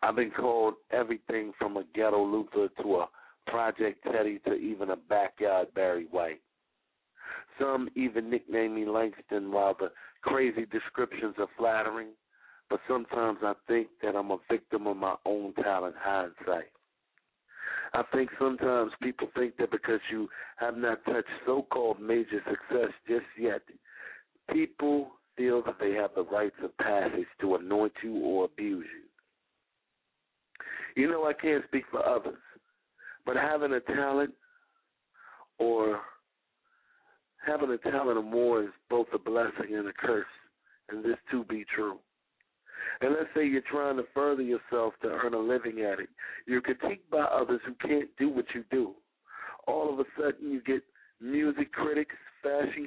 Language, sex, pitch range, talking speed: English, male, 110-145 Hz, 155 wpm